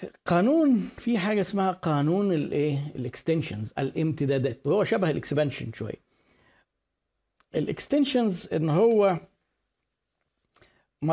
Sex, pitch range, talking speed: male, 145-185 Hz, 85 wpm